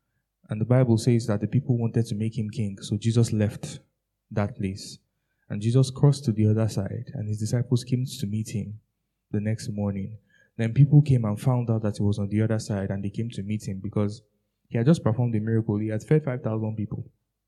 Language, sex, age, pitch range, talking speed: English, male, 10-29, 110-130 Hz, 225 wpm